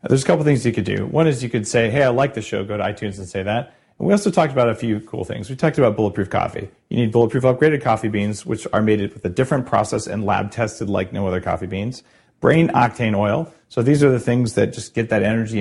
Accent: American